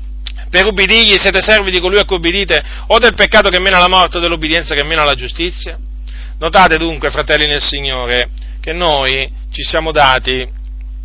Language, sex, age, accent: Italian, male, 40-59, native